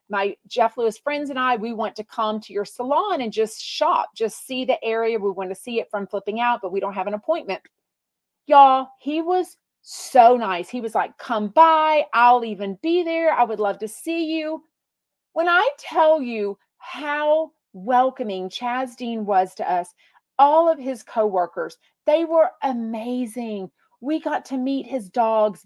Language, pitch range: English, 200-260 Hz